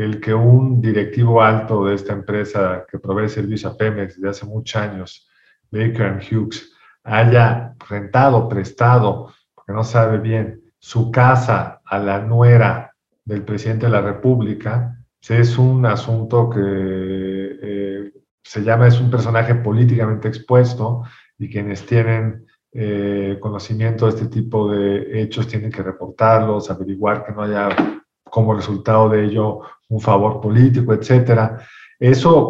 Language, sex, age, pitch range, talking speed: Spanish, male, 50-69, 100-115 Hz, 140 wpm